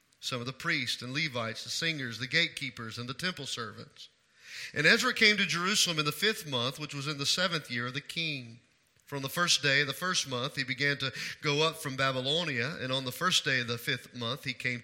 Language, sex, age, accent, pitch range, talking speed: English, male, 40-59, American, 125-165 Hz, 235 wpm